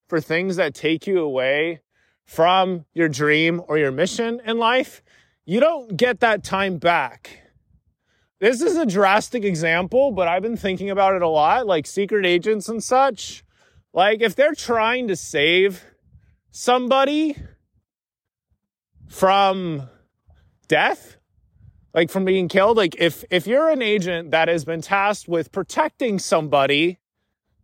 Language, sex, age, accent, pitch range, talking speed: English, male, 30-49, American, 170-225 Hz, 140 wpm